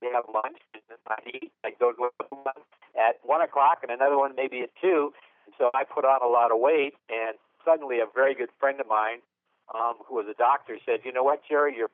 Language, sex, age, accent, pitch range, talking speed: English, male, 60-79, American, 115-140 Hz, 235 wpm